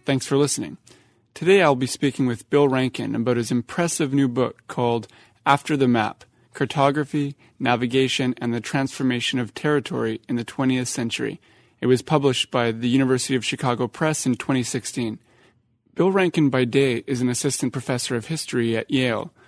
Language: English